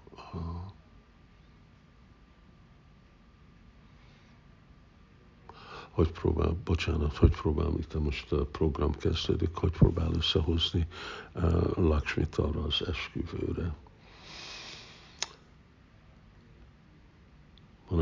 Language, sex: Hungarian, male